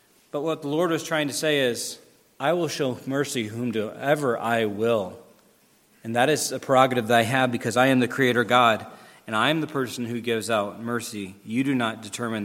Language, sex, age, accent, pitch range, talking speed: English, male, 40-59, American, 120-170 Hz, 205 wpm